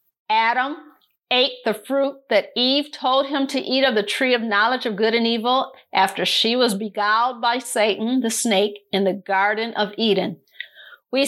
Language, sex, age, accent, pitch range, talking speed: English, female, 50-69, American, 225-280 Hz, 175 wpm